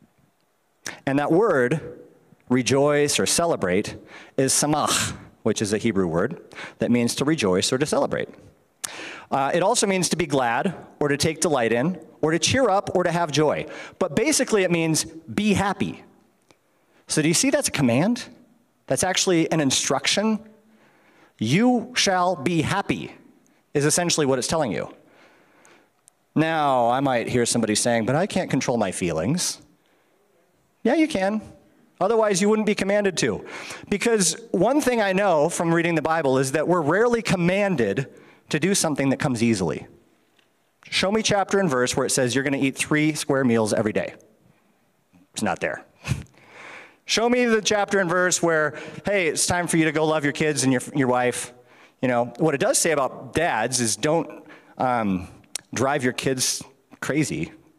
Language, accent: English, American